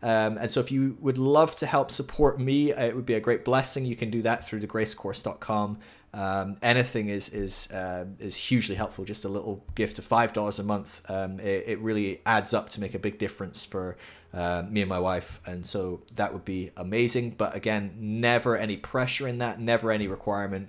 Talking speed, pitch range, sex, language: 210 wpm, 100-120 Hz, male, English